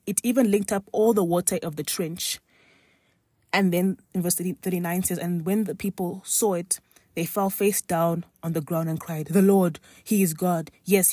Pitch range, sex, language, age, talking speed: 155-190 Hz, female, English, 20-39, 200 wpm